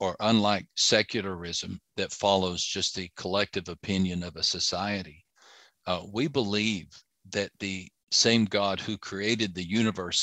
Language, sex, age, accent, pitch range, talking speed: English, male, 50-69, American, 95-115 Hz, 135 wpm